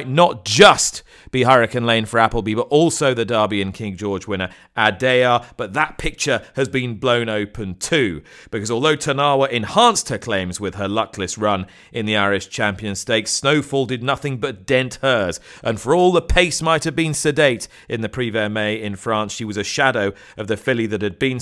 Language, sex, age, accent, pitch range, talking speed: English, male, 40-59, British, 110-145 Hz, 195 wpm